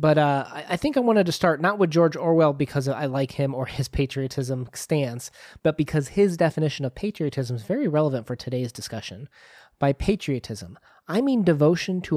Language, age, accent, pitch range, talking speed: English, 30-49, American, 130-165 Hz, 185 wpm